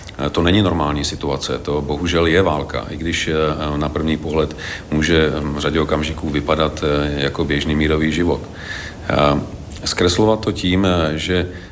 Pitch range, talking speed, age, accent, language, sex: 75-90 Hz, 135 wpm, 50-69, native, Czech, male